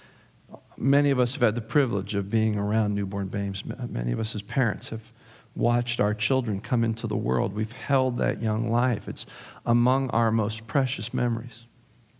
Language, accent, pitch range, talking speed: English, American, 110-130 Hz, 175 wpm